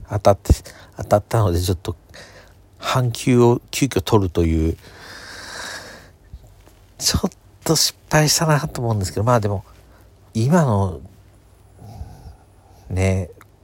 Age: 50-69